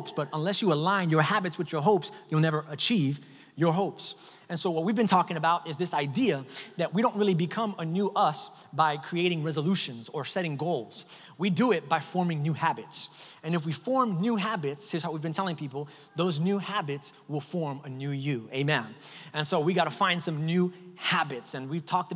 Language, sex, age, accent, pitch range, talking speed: English, male, 30-49, American, 155-190 Hz, 210 wpm